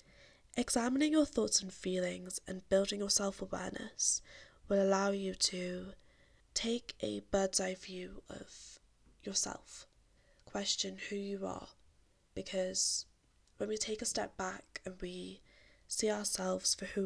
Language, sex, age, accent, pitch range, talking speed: English, female, 10-29, British, 180-205 Hz, 130 wpm